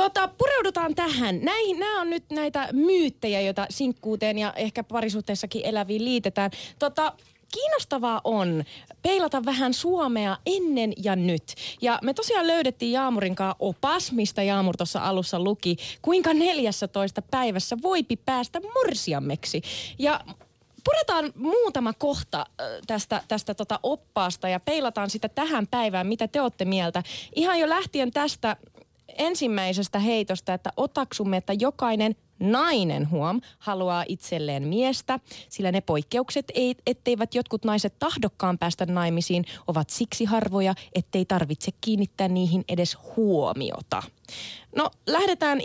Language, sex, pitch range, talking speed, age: Finnish, female, 190-275 Hz, 125 wpm, 20-39